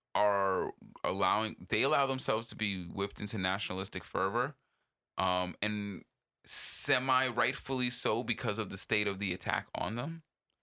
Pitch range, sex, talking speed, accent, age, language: 100-115 Hz, male, 140 wpm, American, 20-39, English